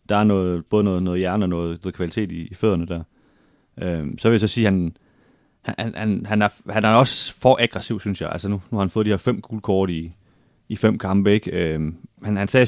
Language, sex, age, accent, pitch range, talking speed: Danish, male, 30-49, native, 90-110 Hz, 250 wpm